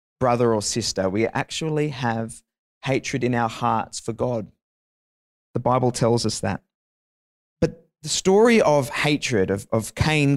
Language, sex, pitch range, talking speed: English, male, 115-150 Hz, 145 wpm